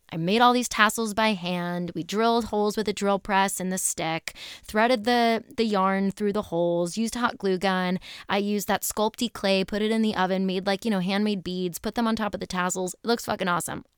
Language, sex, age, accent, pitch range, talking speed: English, female, 10-29, American, 185-235 Hz, 240 wpm